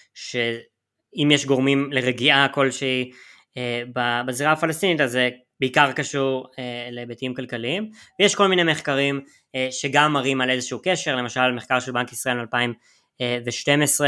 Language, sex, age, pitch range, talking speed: Hebrew, female, 20-39, 125-155 Hz, 130 wpm